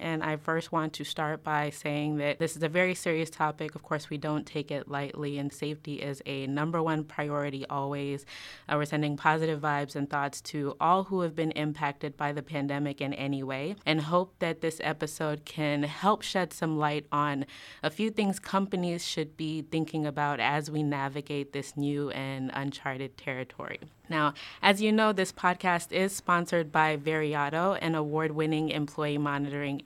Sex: female